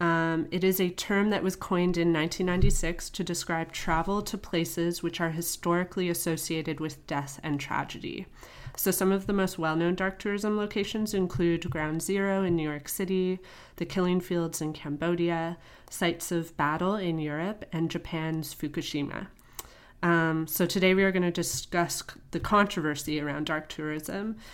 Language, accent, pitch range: English, American, 155-190 Hz